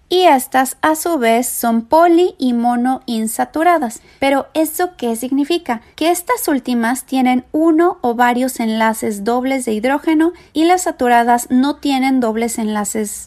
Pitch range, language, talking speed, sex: 225-275 Hz, Spanish, 145 wpm, female